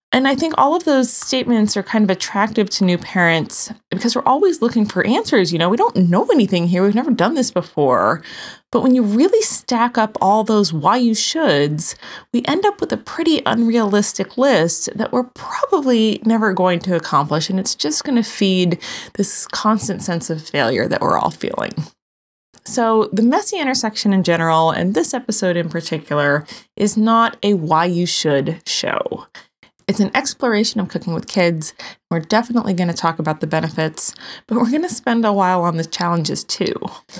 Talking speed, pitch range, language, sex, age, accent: 185 wpm, 175-240 Hz, English, female, 20-39, American